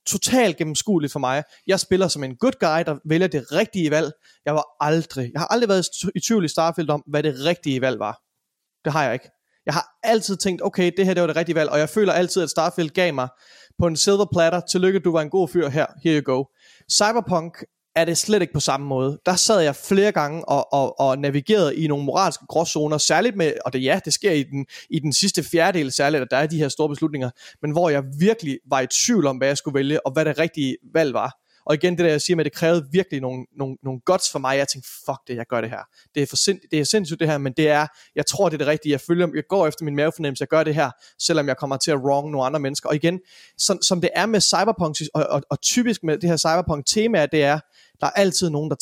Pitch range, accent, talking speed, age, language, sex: 145-180 Hz, native, 260 wpm, 30-49, Danish, male